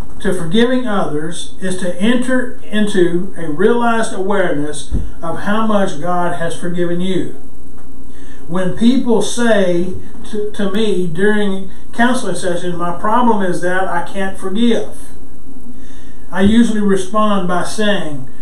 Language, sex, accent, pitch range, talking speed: English, male, American, 180-230 Hz, 125 wpm